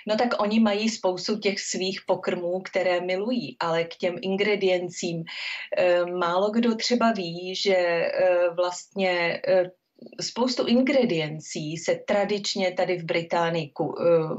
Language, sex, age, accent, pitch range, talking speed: Czech, female, 30-49, native, 175-205 Hz, 125 wpm